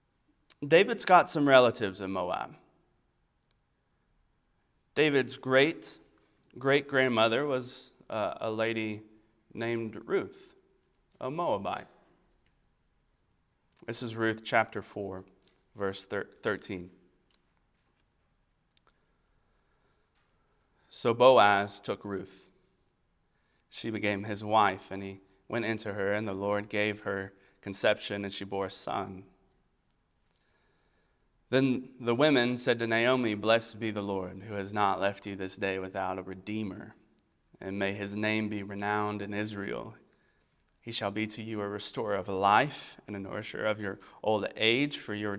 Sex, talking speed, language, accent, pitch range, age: male, 125 wpm, English, American, 100-115 Hz, 30-49